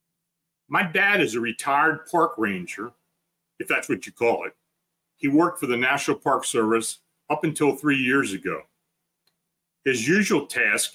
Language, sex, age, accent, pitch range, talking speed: English, male, 40-59, American, 110-165 Hz, 155 wpm